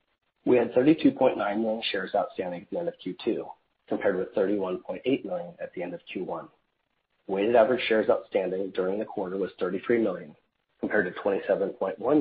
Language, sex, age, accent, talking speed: English, male, 30-49, American, 160 wpm